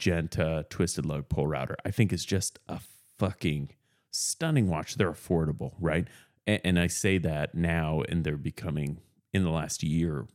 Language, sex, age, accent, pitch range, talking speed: English, male, 30-49, American, 85-120 Hz, 170 wpm